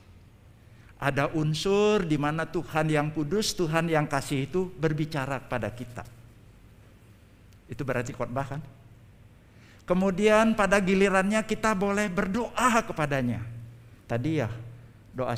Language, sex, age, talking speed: Indonesian, male, 50-69, 105 wpm